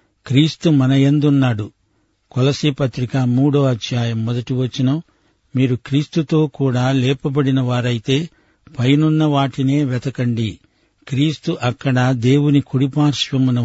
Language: Telugu